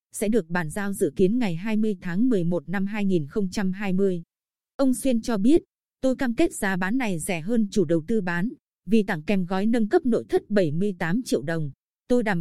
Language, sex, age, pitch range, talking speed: Vietnamese, female, 20-39, 185-240 Hz, 200 wpm